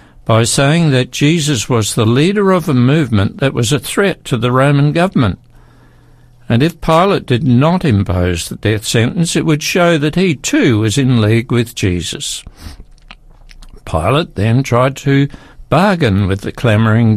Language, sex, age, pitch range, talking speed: English, male, 60-79, 115-155 Hz, 160 wpm